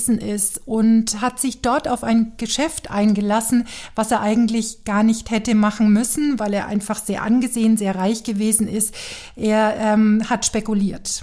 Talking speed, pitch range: 160 wpm, 205-235 Hz